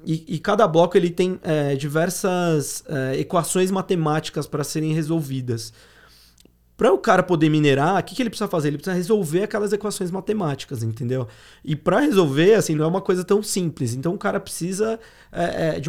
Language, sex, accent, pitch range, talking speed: Portuguese, male, Brazilian, 145-190 Hz, 160 wpm